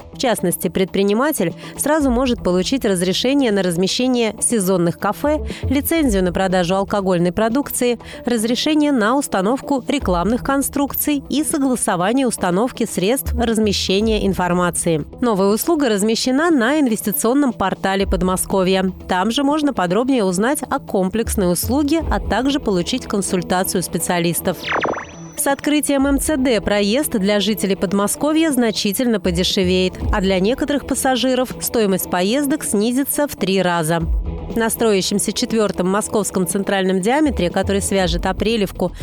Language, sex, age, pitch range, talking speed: Russian, female, 30-49, 190-260 Hz, 115 wpm